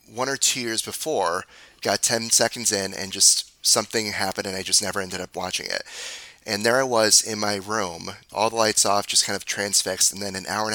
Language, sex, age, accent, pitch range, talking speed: English, male, 30-49, American, 95-115 Hz, 230 wpm